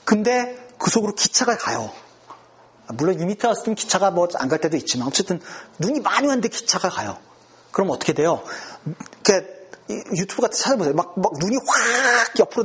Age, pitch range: 40-59, 165-245 Hz